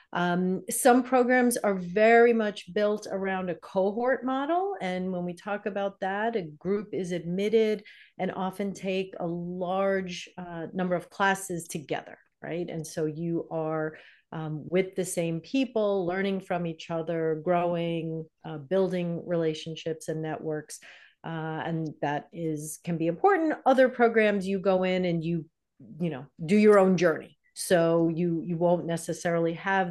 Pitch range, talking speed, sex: 165-205 Hz, 155 wpm, female